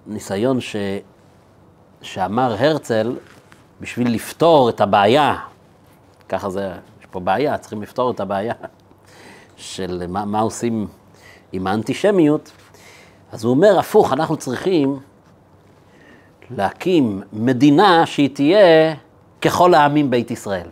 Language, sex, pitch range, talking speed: Hebrew, male, 100-165 Hz, 105 wpm